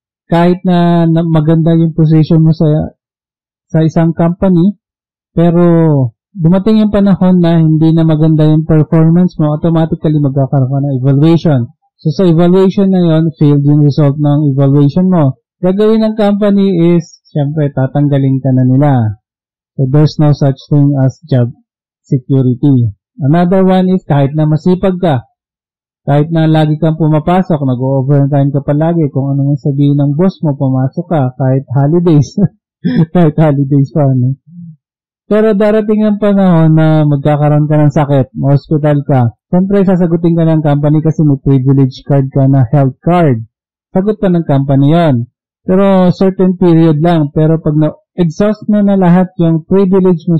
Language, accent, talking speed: English, Filipino, 150 wpm